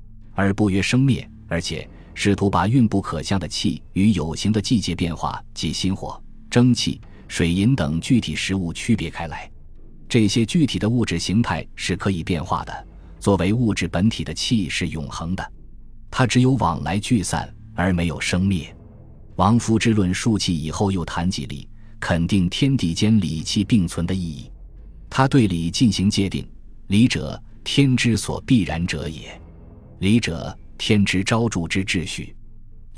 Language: Chinese